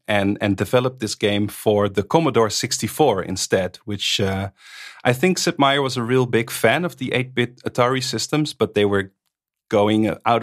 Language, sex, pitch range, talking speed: English, male, 110-150 Hz, 180 wpm